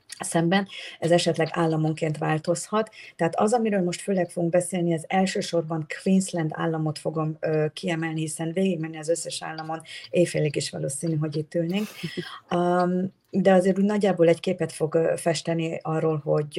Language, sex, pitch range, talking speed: Hungarian, female, 160-185 Hz, 150 wpm